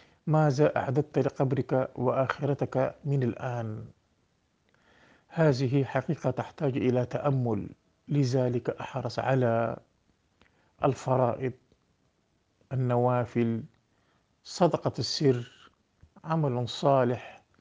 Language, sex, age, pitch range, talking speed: Arabic, male, 50-69, 125-155 Hz, 70 wpm